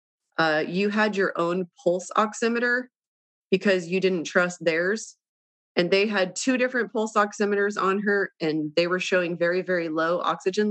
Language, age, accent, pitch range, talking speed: English, 30-49, American, 160-200 Hz, 160 wpm